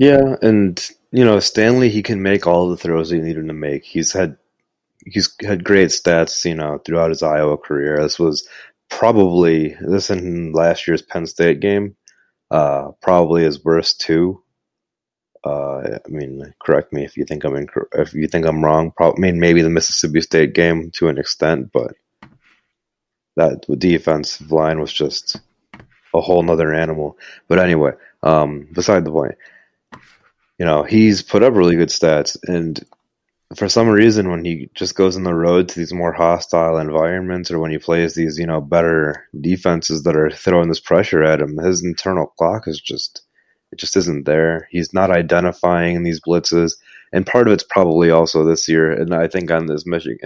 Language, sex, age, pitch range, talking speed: English, male, 30-49, 80-90 Hz, 180 wpm